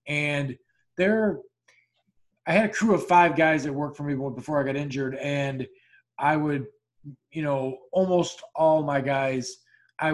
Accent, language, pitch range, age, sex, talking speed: American, English, 140-170 Hz, 20-39, male, 160 wpm